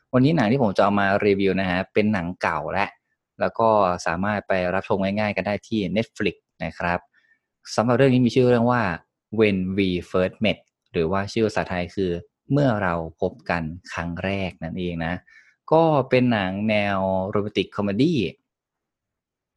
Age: 20-39